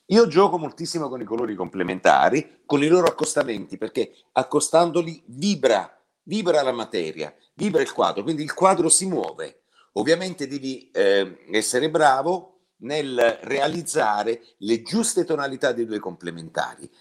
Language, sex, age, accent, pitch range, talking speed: Italian, male, 50-69, native, 125-185 Hz, 135 wpm